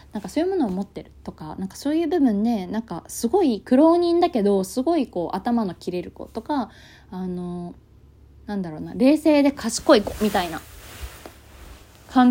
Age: 20-39